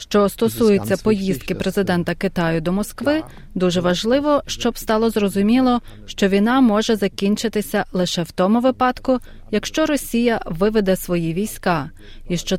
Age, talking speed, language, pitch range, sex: 30-49, 130 wpm, Ukrainian, 180-235 Hz, female